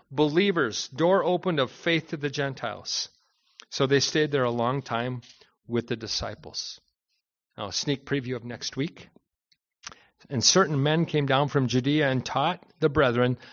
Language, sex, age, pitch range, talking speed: English, male, 40-59, 120-155 Hz, 160 wpm